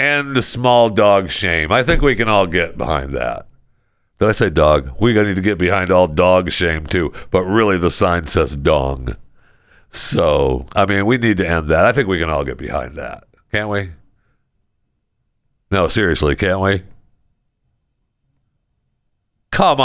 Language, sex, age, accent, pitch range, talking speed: English, male, 50-69, American, 95-145 Hz, 165 wpm